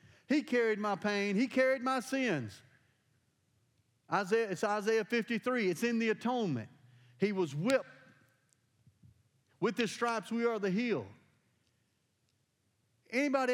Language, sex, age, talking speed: English, male, 40-59, 120 wpm